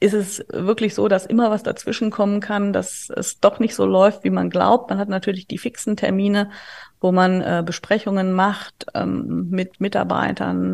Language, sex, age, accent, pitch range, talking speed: German, female, 30-49, German, 180-205 Hz, 185 wpm